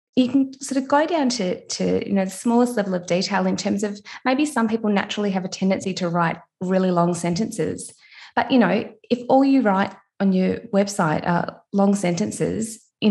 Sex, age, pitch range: female, 20-39, 170-220 Hz